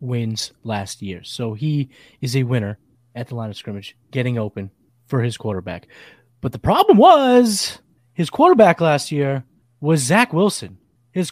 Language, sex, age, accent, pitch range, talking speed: English, male, 30-49, American, 120-180 Hz, 160 wpm